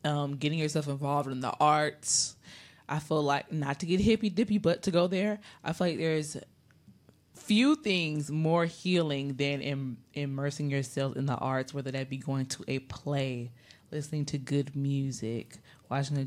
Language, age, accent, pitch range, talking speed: English, 20-39, American, 135-165 Hz, 175 wpm